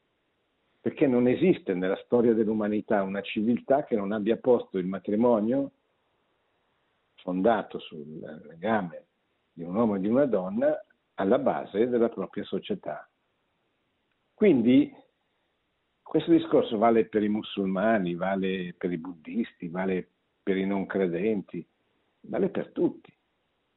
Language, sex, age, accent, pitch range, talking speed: Italian, male, 60-79, native, 95-125 Hz, 120 wpm